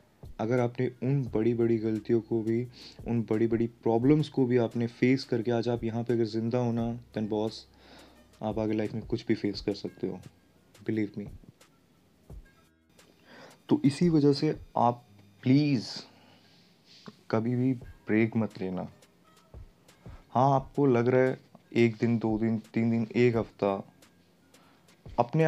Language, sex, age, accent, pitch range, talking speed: Hindi, male, 20-39, native, 110-135 Hz, 150 wpm